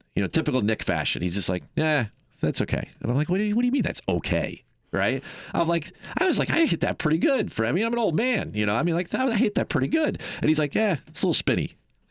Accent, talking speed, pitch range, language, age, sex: American, 300 wpm, 105-150 Hz, English, 40-59, male